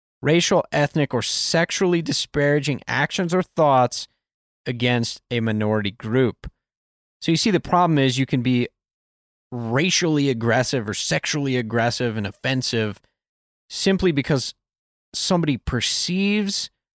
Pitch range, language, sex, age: 120-170 Hz, English, male, 30-49